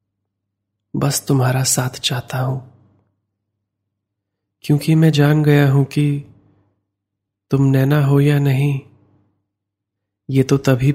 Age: 20-39